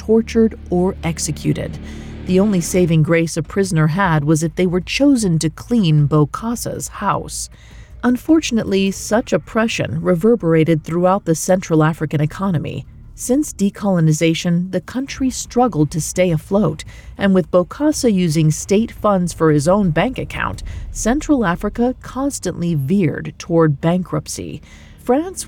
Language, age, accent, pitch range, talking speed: English, 40-59, American, 160-225 Hz, 125 wpm